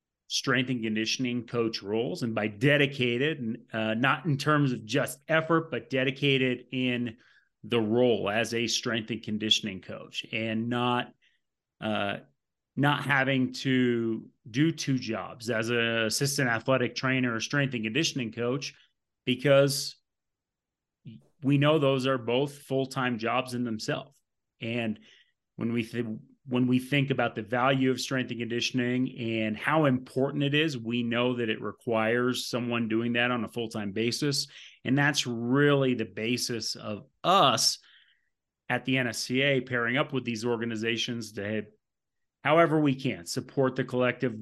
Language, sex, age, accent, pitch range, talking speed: English, male, 30-49, American, 115-135 Hz, 145 wpm